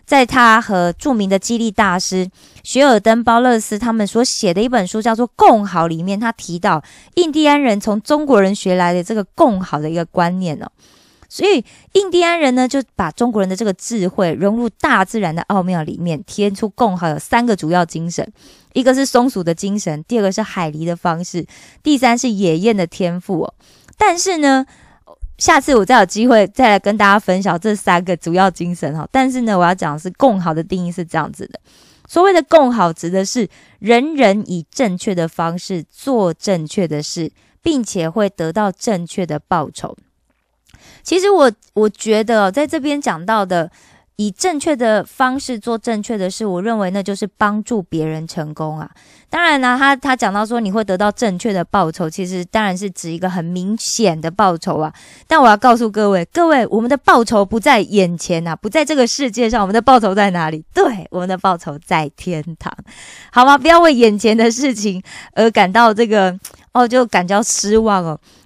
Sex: female